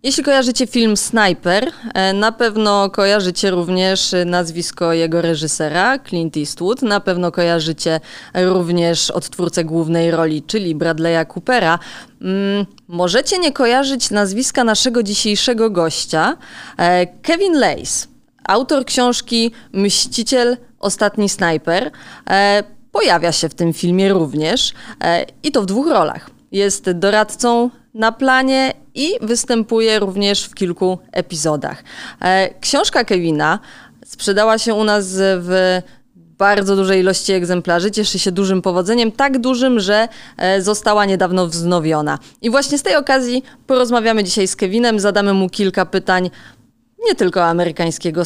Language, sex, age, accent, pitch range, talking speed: Polish, female, 20-39, native, 175-235 Hz, 120 wpm